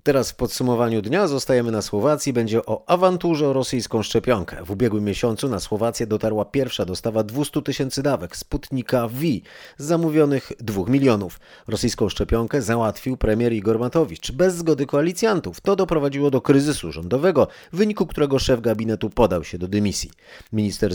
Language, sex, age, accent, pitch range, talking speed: Polish, male, 30-49, native, 105-145 Hz, 150 wpm